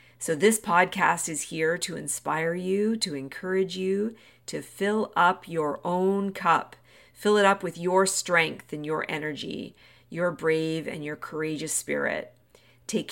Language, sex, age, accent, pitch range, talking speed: English, female, 40-59, American, 155-195 Hz, 150 wpm